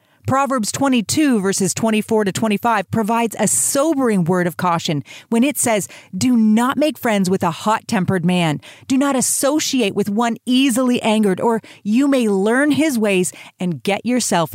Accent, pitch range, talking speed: American, 180-255 Hz, 160 wpm